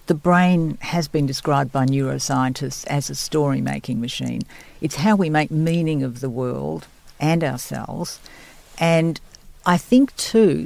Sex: female